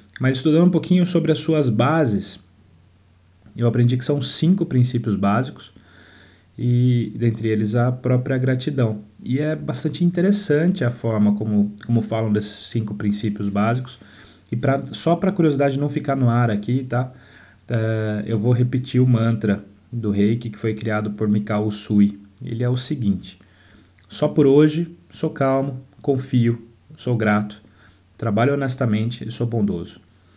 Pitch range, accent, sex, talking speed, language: 100-135 Hz, Brazilian, male, 145 wpm, Portuguese